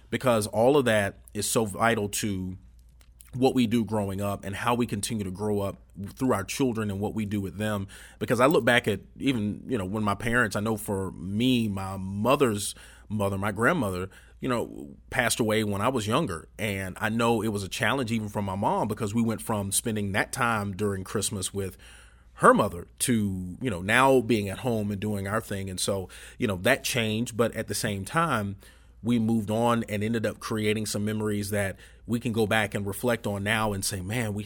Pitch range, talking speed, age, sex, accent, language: 95-115 Hz, 215 wpm, 30-49, male, American, English